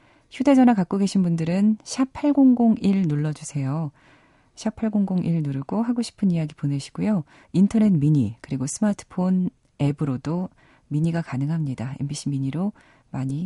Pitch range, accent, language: 140-195 Hz, native, Korean